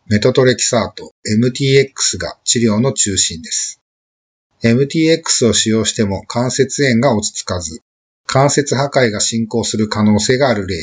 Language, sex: Japanese, male